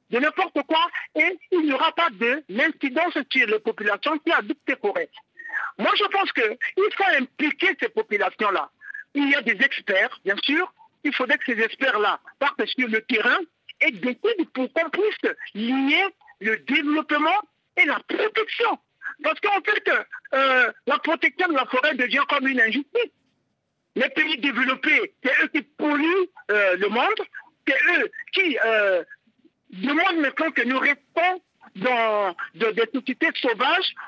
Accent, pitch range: French, 255-370 Hz